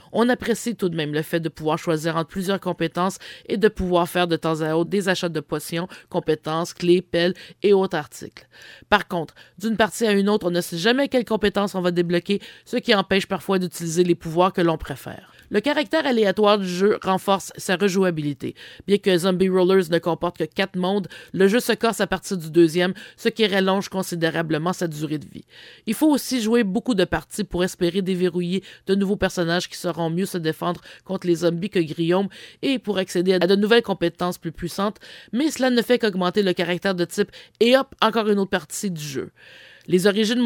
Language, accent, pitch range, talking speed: English, Canadian, 175-210 Hz, 210 wpm